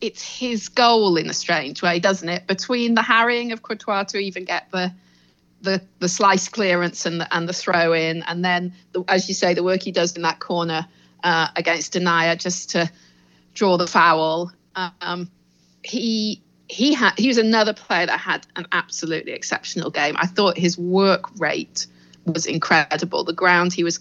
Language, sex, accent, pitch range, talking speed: English, female, British, 165-195 Hz, 185 wpm